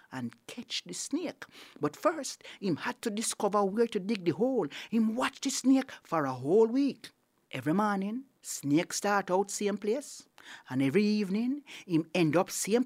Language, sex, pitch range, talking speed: English, male, 160-240 Hz, 175 wpm